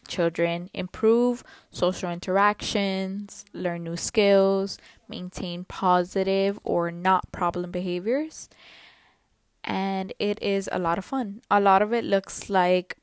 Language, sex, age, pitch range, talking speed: English, female, 10-29, 175-205 Hz, 120 wpm